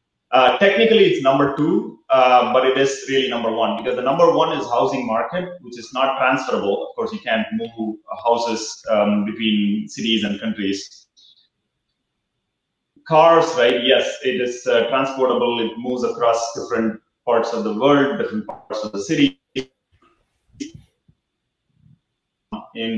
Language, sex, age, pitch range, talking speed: English, male, 30-49, 115-160 Hz, 145 wpm